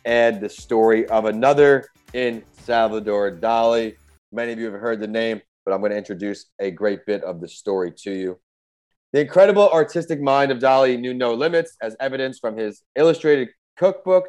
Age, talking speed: 30-49, 175 wpm